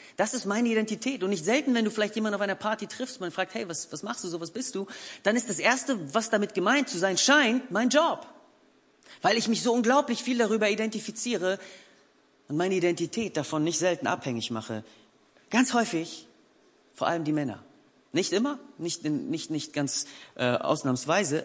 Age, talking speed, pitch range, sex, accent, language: 40-59, 190 wpm, 135-225 Hz, male, German, German